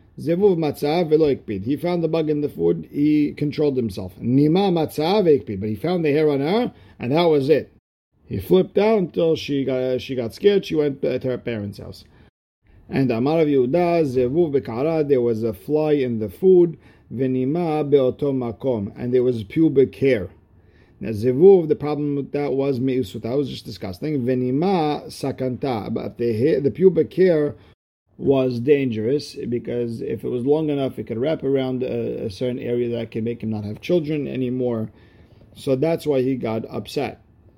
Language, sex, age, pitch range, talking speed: English, male, 50-69, 115-150 Hz, 160 wpm